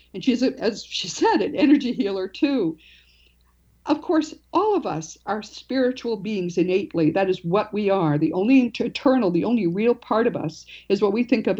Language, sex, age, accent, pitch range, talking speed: English, female, 50-69, American, 170-240 Hz, 190 wpm